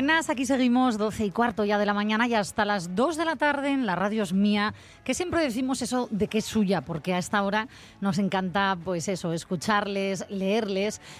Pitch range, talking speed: 185-240 Hz, 210 wpm